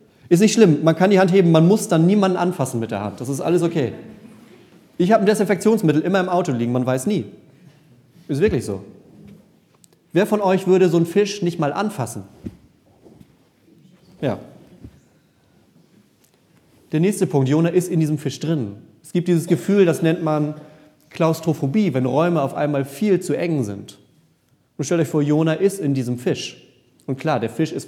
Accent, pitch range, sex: German, 130-170 Hz, male